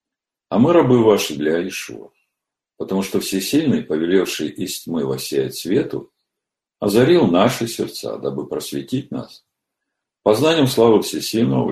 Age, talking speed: 50-69, 125 wpm